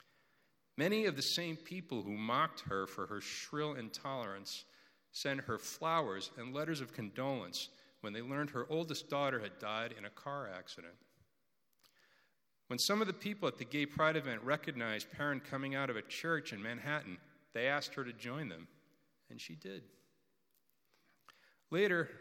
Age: 50-69